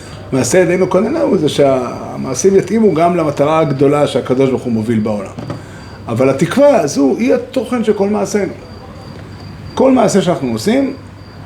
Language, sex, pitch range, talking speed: Hebrew, male, 110-150 Hz, 135 wpm